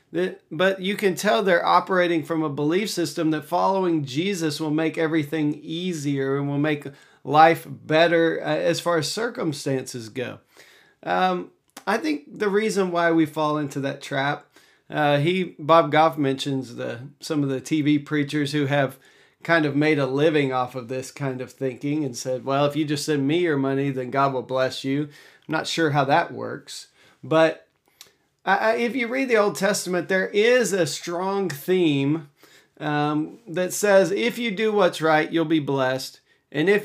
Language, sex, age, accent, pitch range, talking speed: English, male, 40-59, American, 145-185 Hz, 175 wpm